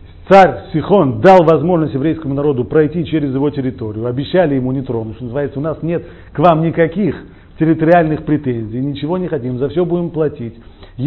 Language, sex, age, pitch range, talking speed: Russian, male, 40-59, 120-185 Hz, 170 wpm